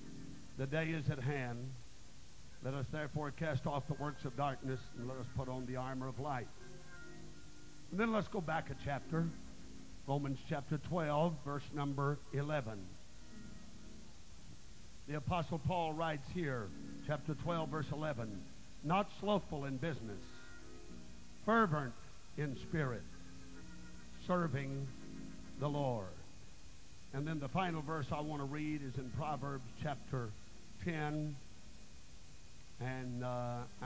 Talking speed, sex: 125 wpm, male